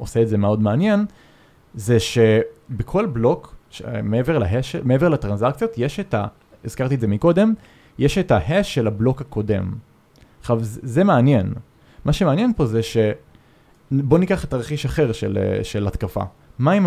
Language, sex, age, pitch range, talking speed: Hebrew, male, 20-39, 110-150 Hz, 160 wpm